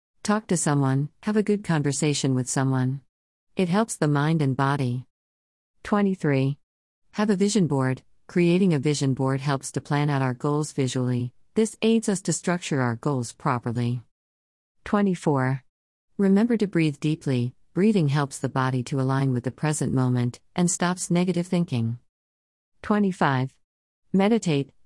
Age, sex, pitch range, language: 50-69, female, 130-180 Hz, English